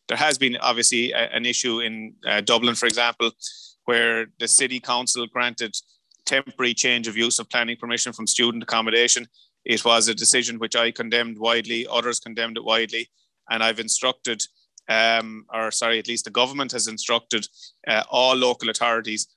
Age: 30-49